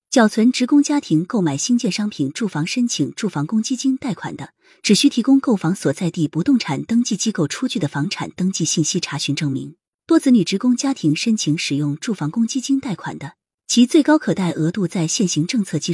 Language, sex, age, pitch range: Chinese, female, 20-39, 160-245 Hz